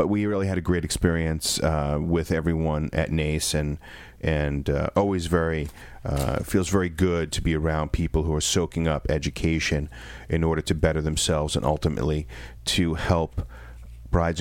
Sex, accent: male, American